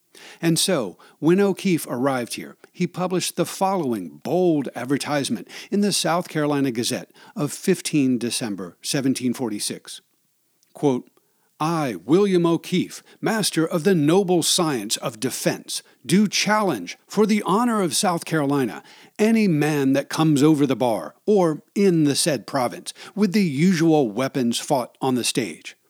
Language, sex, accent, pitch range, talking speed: English, male, American, 140-185 Hz, 140 wpm